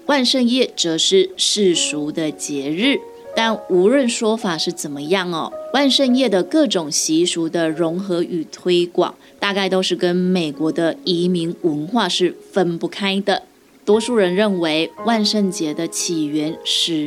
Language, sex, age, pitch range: Chinese, female, 20-39, 165-225 Hz